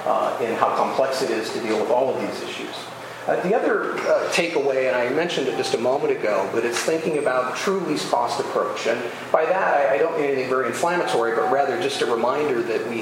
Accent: American